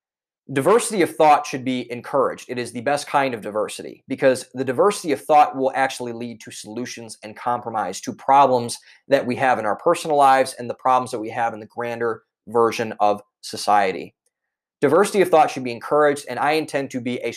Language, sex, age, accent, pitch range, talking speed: English, male, 20-39, American, 120-145 Hz, 200 wpm